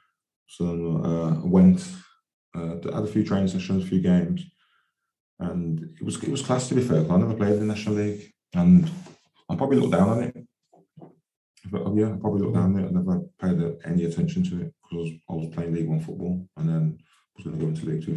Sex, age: male, 20-39